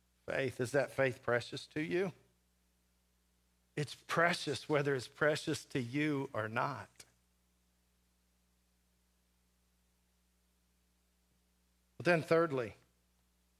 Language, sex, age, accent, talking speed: English, male, 50-69, American, 85 wpm